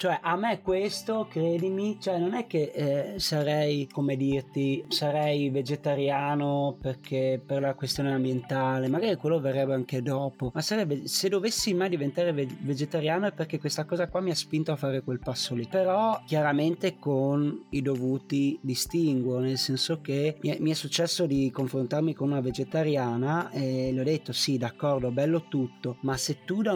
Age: 30-49